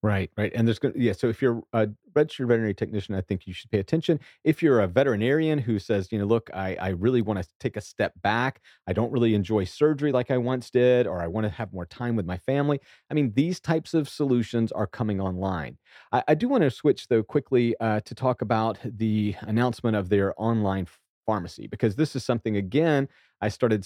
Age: 40-59